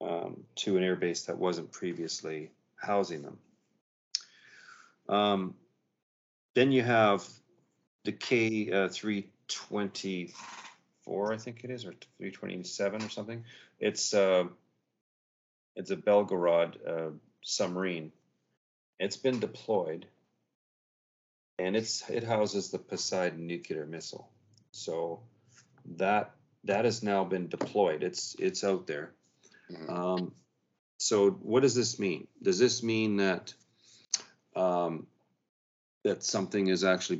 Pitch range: 85-110 Hz